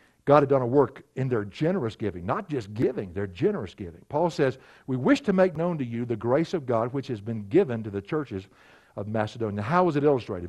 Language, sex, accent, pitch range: English, male, American, 105-155 Hz